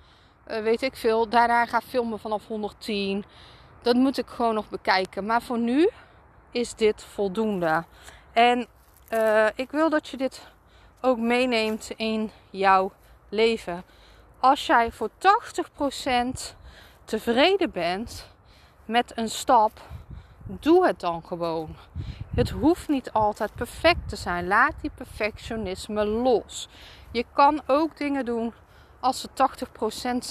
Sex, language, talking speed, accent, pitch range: female, Dutch, 130 wpm, Dutch, 210-255 Hz